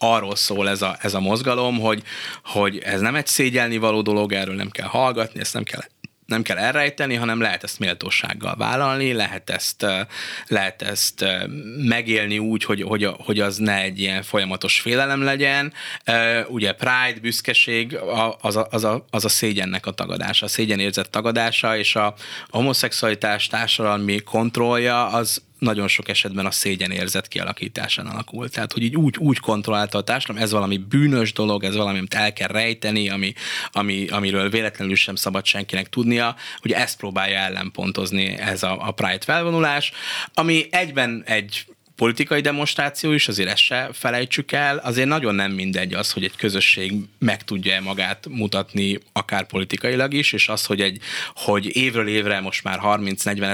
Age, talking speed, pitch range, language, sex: 20-39, 160 wpm, 100-120 Hz, Hungarian, male